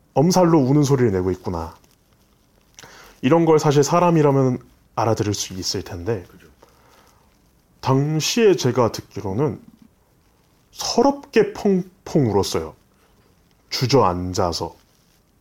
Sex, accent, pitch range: male, native, 100-150 Hz